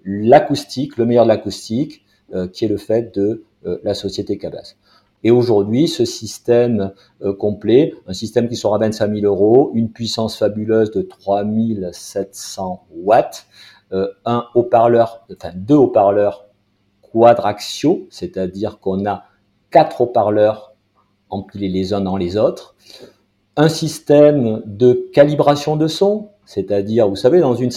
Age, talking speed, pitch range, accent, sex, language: 50-69, 130 wpm, 100-135 Hz, French, male, French